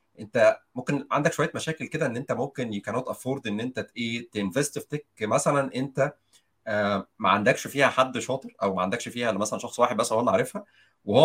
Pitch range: 100-135 Hz